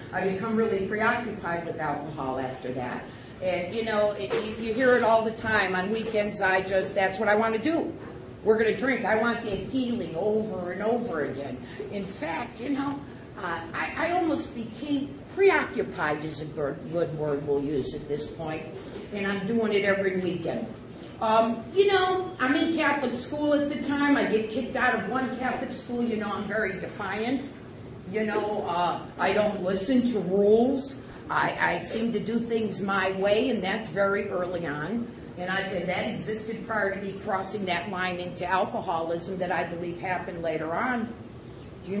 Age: 50-69